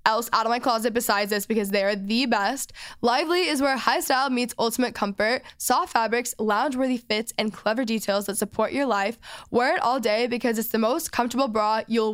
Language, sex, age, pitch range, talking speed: English, female, 10-29, 215-255 Hz, 215 wpm